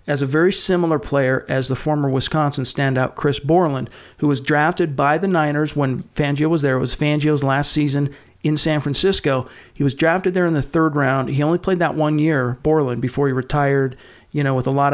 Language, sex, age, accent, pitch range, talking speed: English, male, 40-59, American, 140-160 Hz, 215 wpm